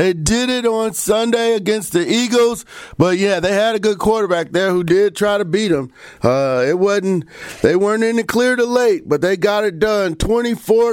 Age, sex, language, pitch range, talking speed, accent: 40-59, male, English, 175-215 Hz, 210 wpm, American